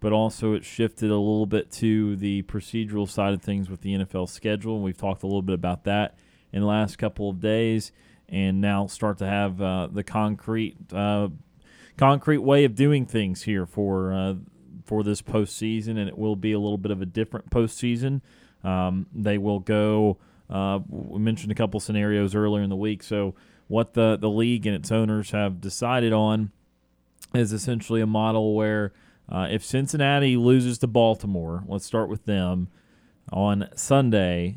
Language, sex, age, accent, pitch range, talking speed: English, male, 30-49, American, 100-115 Hz, 180 wpm